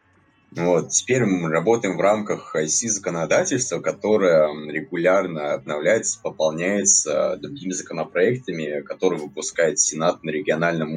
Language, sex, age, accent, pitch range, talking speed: Russian, male, 20-39, native, 85-110 Hz, 105 wpm